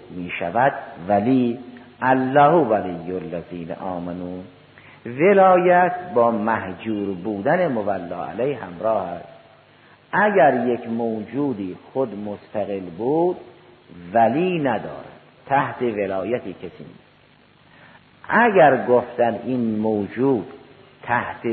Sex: male